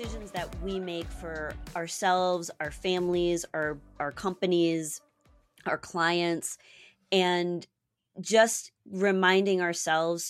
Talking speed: 100 wpm